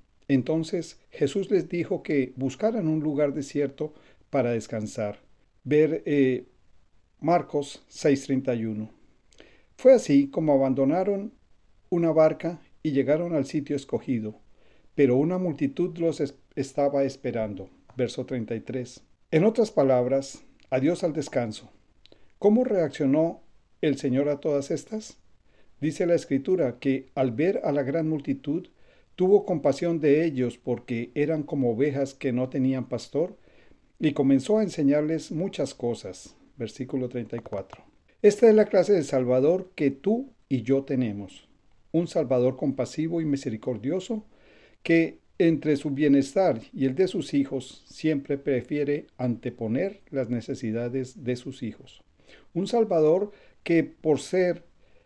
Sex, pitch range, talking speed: male, 130-165 Hz, 125 wpm